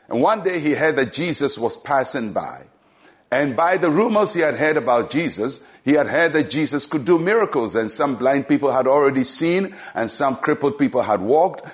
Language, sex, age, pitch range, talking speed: English, male, 60-79, 150-195 Hz, 205 wpm